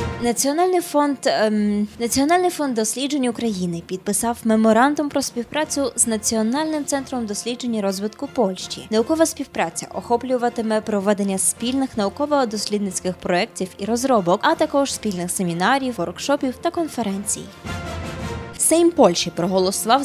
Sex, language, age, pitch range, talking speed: female, Polish, 20-39, 200-275 Hz, 110 wpm